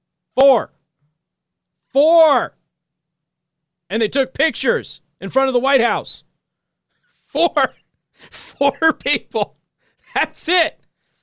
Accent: American